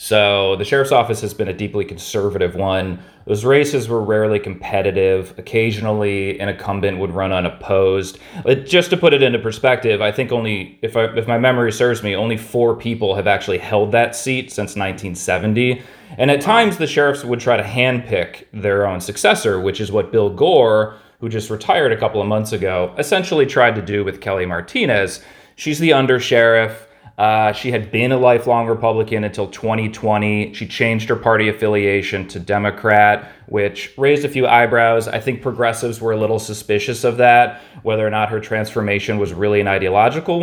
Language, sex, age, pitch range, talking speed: English, male, 30-49, 100-120 Hz, 185 wpm